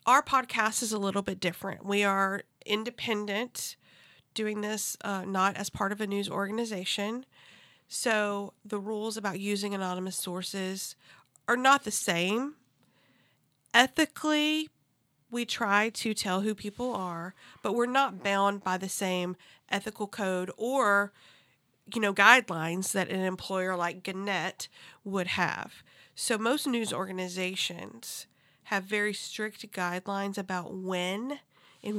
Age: 40-59